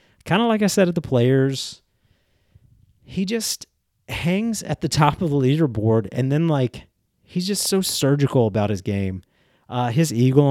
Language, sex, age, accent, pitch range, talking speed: English, male, 30-49, American, 105-140 Hz, 170 wpm